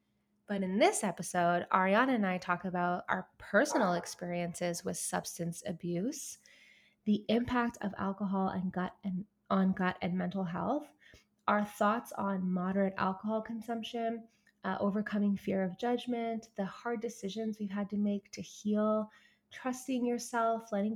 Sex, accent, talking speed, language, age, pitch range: female, American, 145 wpm, English, 20-39, 190-230 Hz